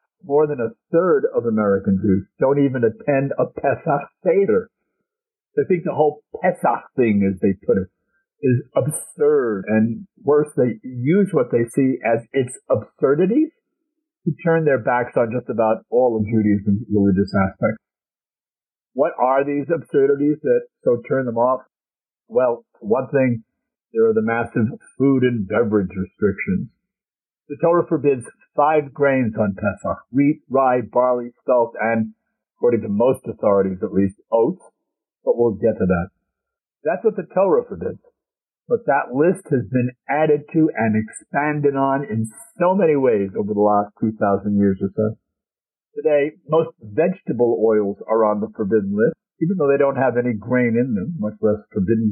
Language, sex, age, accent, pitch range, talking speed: English, male, 50-69, American, 110-170 Hz, 160 wpm